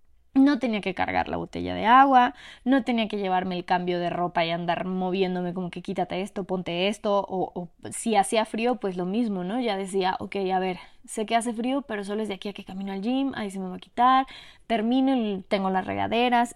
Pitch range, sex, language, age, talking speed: 185-245 Hz, female, Spanish, 20-39, 230 wpm